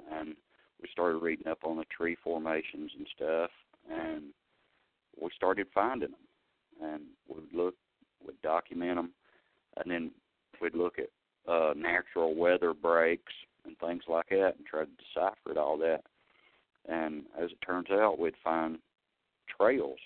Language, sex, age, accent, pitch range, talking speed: English, male, 40-59, American, 80-105 Hz, 150 wpm